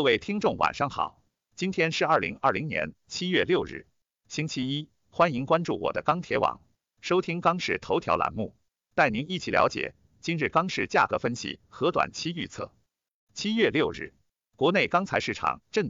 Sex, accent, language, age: male, native, Chinese, 50-69